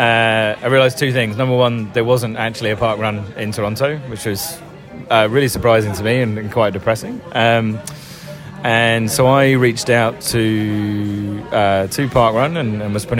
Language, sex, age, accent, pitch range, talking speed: English, male, 20-39, British, 105-125 Hz, 185 wpm